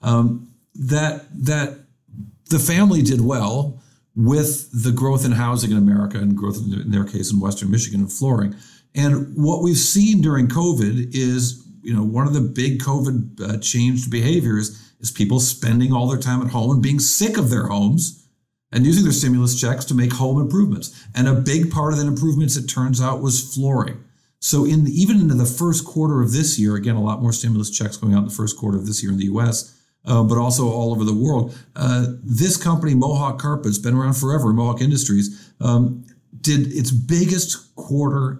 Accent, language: American, English